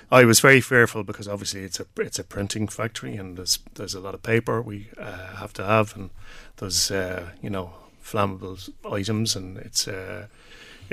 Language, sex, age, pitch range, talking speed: English, male, 30-49, 100-110 Hz, 185 wpm